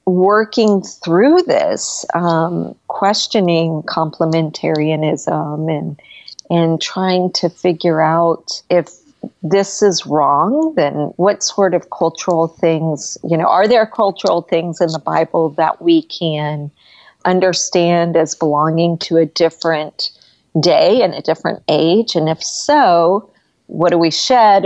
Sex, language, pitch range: female, English, 160-200 Hz